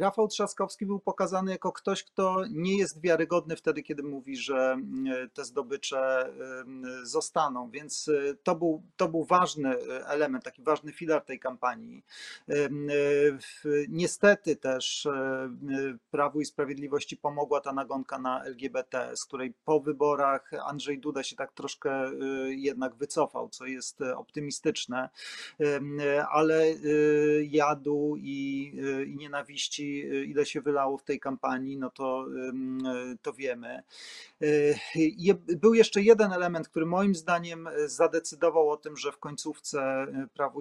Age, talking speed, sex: 40-59, 120 wpm, male